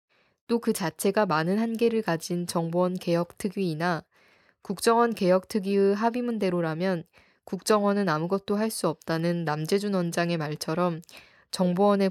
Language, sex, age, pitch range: Korean, female, 20-39, 170-215 Hz